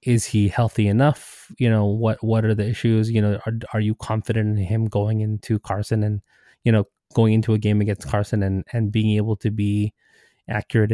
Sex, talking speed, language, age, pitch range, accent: male, 210 wpm, English, 20-39, 105-115 Hz, American